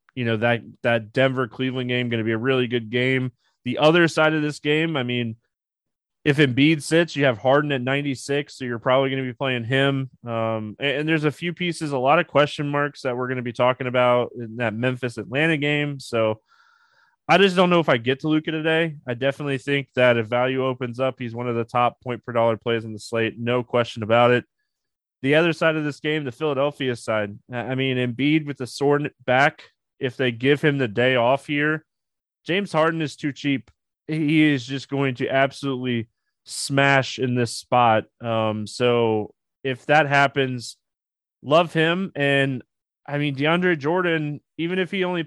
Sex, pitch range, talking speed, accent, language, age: male, 120-150 Hz, 195 wpm, American, English, 20-39